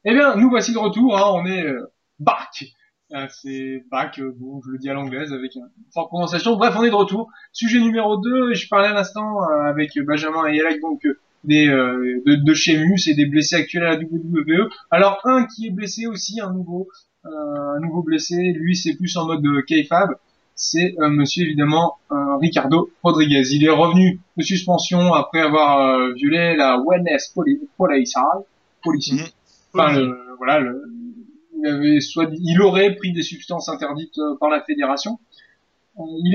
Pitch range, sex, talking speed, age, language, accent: 150-205 Hz, male, 185 wpm, 20-39, French, French